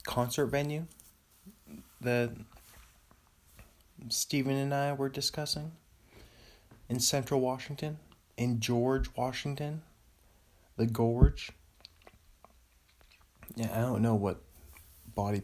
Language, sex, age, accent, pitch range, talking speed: English, male, 20-39, American, 95-135 Hz, 85 wpm